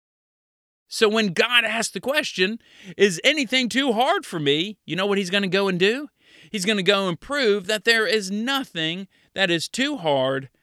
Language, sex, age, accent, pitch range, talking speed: English, male, 40-59, American, 150-215 Hz, 200 wpm